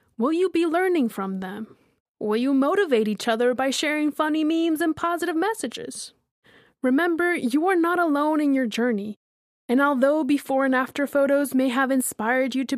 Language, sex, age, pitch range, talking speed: English, female, 20-39, 240-310 Hz, 175 wpm